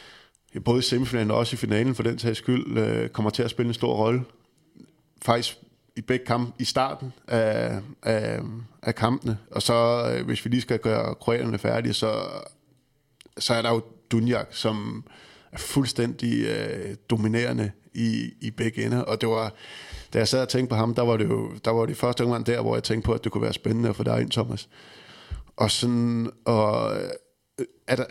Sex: male